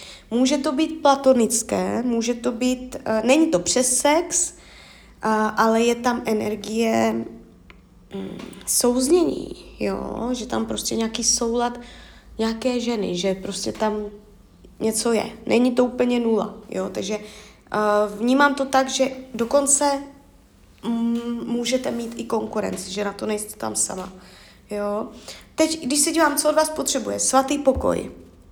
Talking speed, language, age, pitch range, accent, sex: 120 wpm, Czech, 20-39, 210-260 Hz, native, female